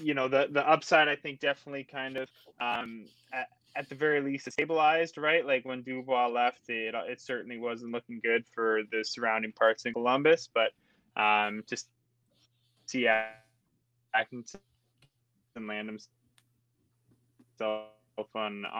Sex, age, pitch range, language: male, 20-39, 115-130 Hz, English